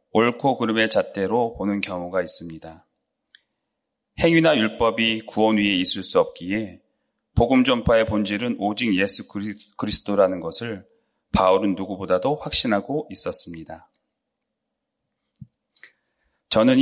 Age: 30-49